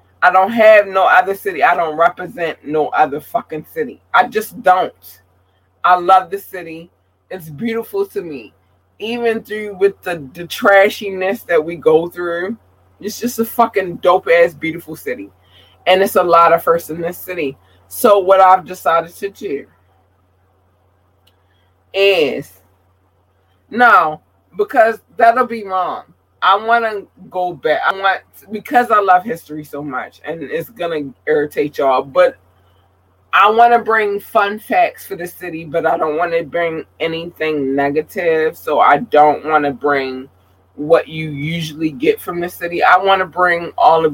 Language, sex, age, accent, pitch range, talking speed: English, female, 20-39, American, 145-205 Hz, 160 wpm